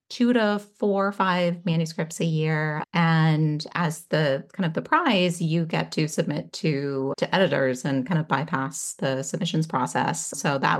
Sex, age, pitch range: female, 30-49, 140-175 Hz